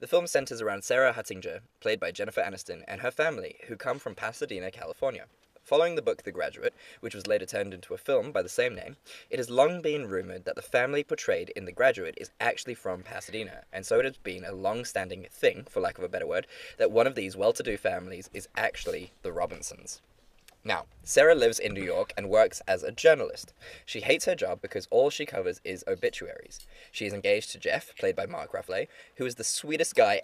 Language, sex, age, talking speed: English, male, 20-39, 215 wpm